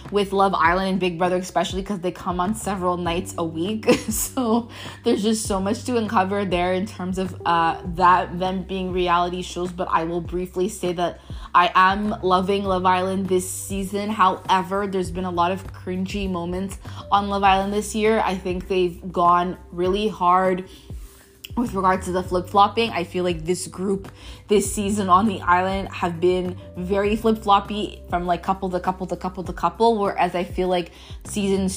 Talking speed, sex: 185 wpm, female